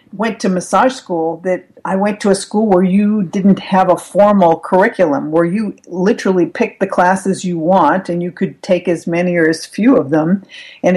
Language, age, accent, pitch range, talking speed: English, 50-69, American, 170-215 Hz, 200 wpm